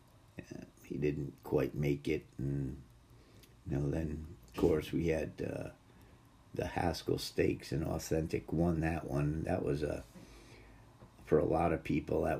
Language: English